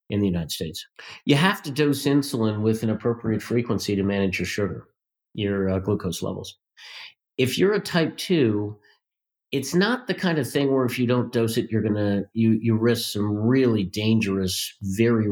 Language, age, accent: English, 50-69, American